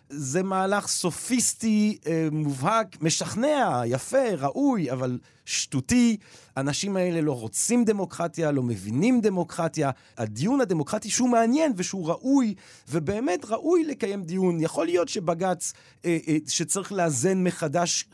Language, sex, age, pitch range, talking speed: Hebrew, male, 40-59, 140-185 Hz, 110 wpm